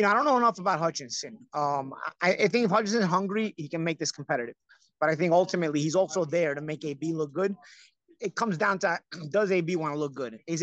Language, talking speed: English, 245 wpm